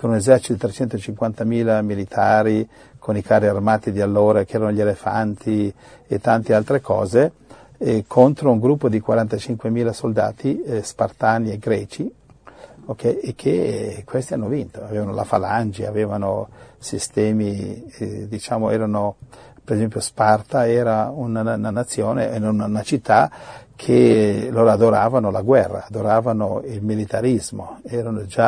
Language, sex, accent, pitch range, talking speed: Italian, male, native, 105-115 Hz, 135 wpm